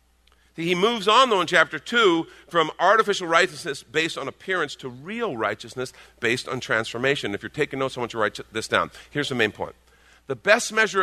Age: 50-69